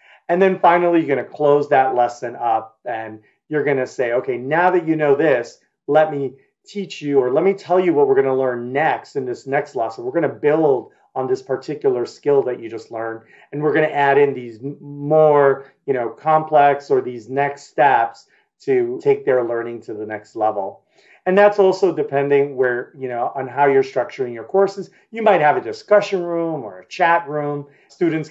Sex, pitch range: male, 125-190 Hz